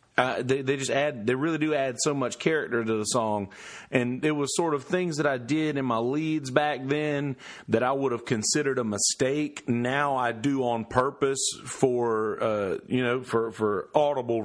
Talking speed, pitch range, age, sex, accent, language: 200 wpm, 115-140 Hz, 40-59, male, American, English